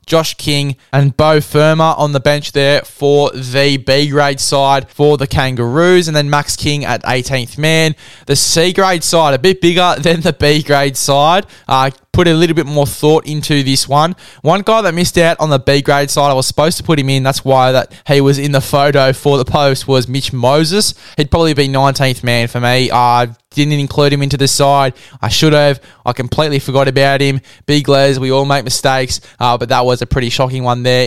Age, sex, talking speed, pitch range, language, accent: 10-29, male, 215 wpm, 135-160 Hz, English, Australian